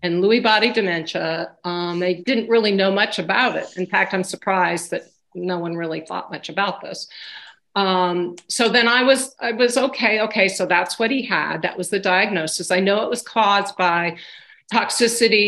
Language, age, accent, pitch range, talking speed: English, 50-69, American, 180-230 Hz, 190 wpm